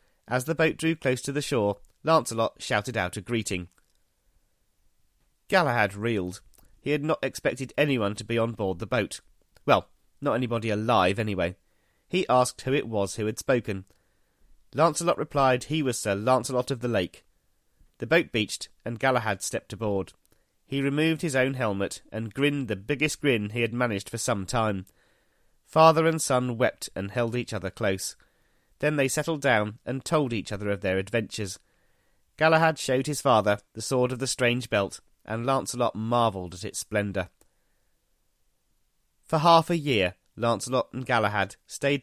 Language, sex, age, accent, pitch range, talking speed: English, male, 30-49, British, 100-140 Hz, 165 wpm